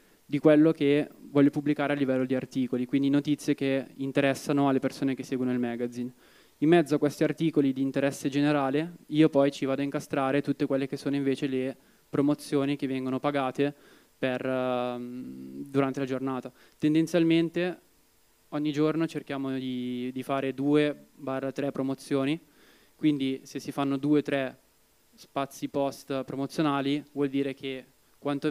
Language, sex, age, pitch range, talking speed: Italian, male, 20-39, 130-145 Hz, 145 wpm